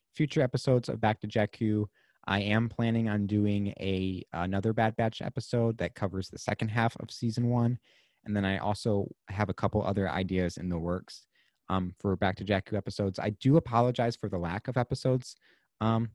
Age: 30-49